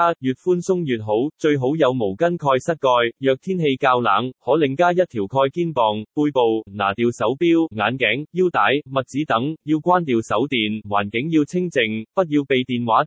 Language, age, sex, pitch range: Chinese, 20-39, male, 115-165 Hz